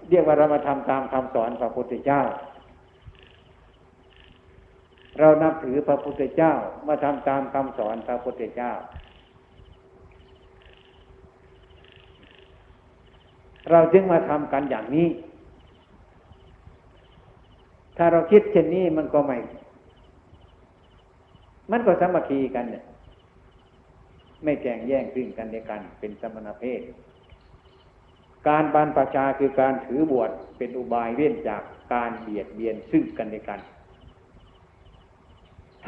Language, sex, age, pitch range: Thai, male, 60-79, 95-140 Hz